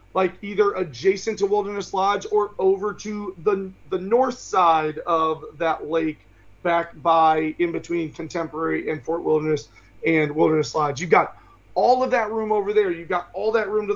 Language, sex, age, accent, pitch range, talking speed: English, male, 30-49, American, 160-215 Hz, 175 wpm